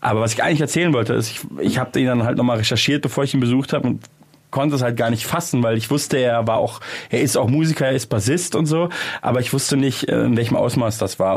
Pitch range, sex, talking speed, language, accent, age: 110-140 Hz, male, 270 wpm, German, German, 30-49